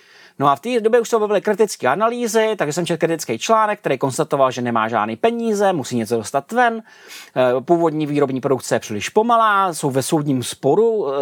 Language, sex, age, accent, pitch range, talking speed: Czech, male, 30-49, native, 130-170 Hz, 185 wpm